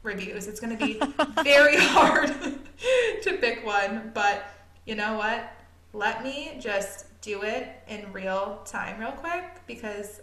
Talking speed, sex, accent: 145 wpm, female, American